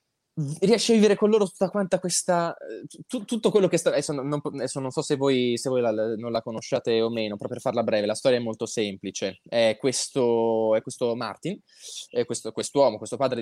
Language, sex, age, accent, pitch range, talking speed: Italian, male, 20-39, native, 120-160 Hz, 210 wpm